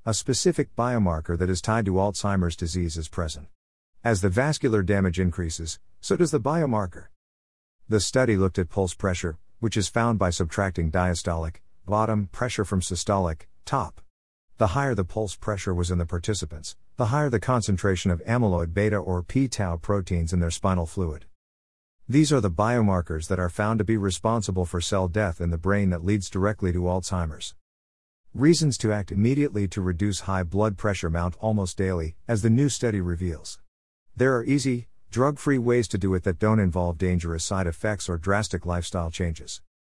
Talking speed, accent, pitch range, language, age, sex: 175 wpm, American, 85-110 Hz, English, 50-69, male